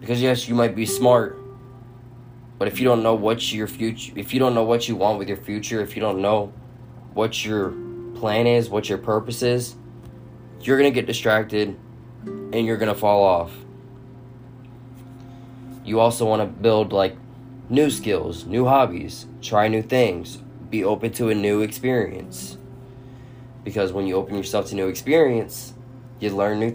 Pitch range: 105-125 Hz